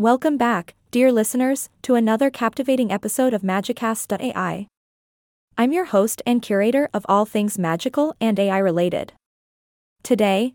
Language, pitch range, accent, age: English, 205-250 Hz, American, 20-39